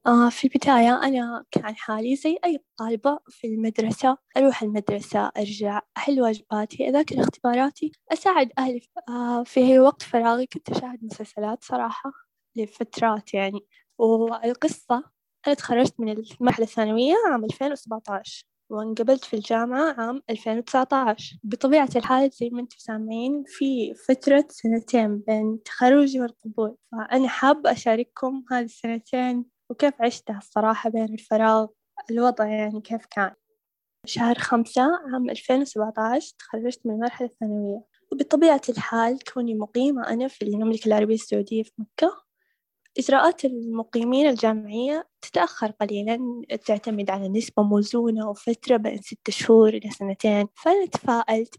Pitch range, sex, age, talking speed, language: 220-265 Hz, female, 10-29, 120 wpm, Arabic